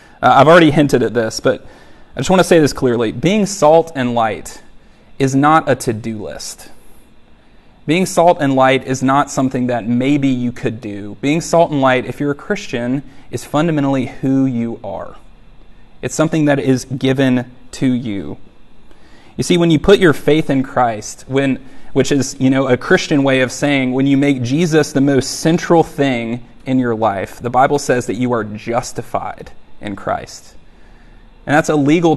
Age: 30-49